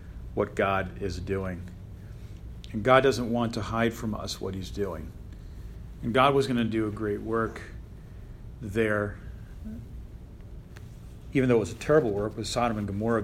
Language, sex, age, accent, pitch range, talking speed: English, male, 40-59, American, 105-120 Hz, 165 wpm